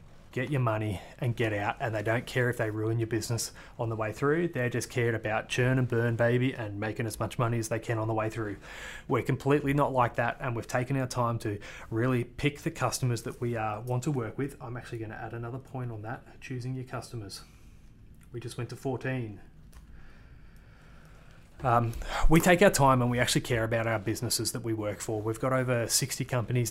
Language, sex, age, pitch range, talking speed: English, male, 30-49, 110-125 Hz, 220 wpm